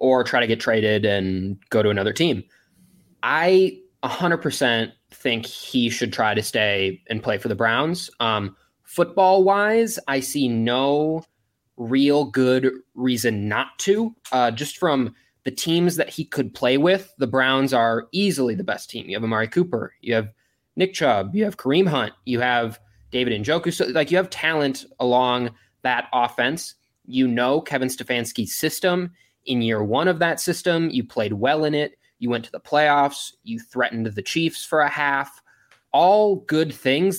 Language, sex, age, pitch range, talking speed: English, male, 20-39, 115-155 Hz, 175 wpm